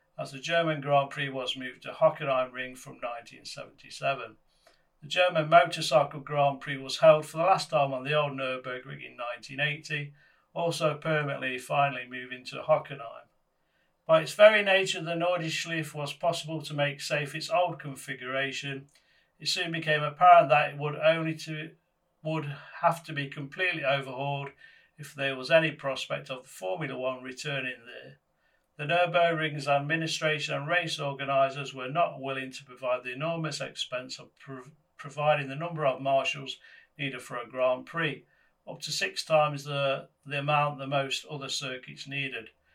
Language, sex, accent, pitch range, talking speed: English, male, British, 135-160 Hz, 155 wpm